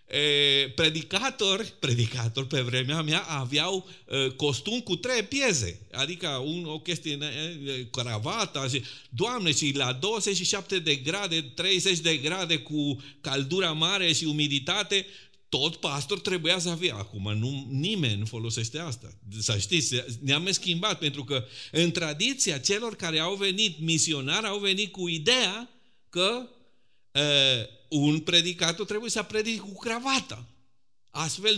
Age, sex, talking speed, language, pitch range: 50-69, male, 135 wpm, Romanian, 135-205 Hz